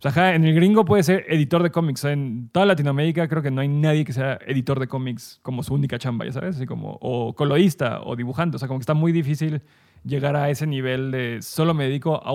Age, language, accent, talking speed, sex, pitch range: 20-39, Spanish, Mexican, 260 wpm, male, 130-160 Hz